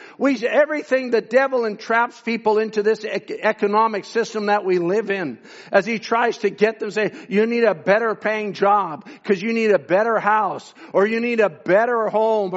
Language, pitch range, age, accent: English, 195-245 Hz, 50-69, American